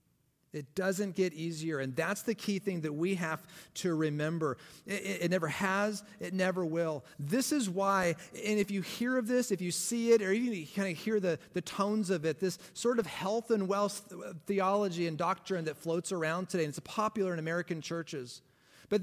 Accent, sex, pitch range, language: American, male, 165-205 Hz, English